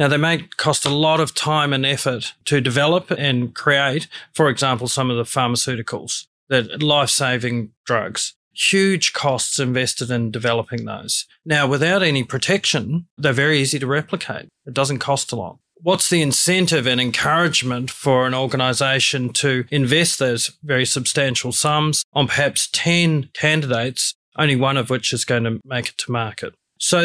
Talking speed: 160 wpm